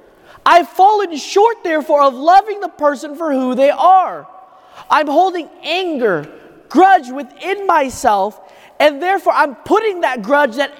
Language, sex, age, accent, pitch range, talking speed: English, male, 30-49, American, 275-360 Hz, 140 wpm